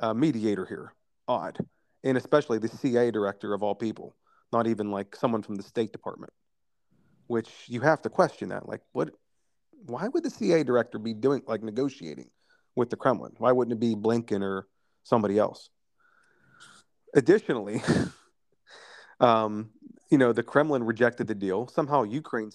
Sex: male